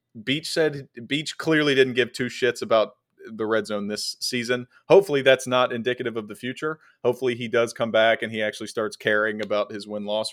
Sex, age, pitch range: male, 30-49, 100-120 Hz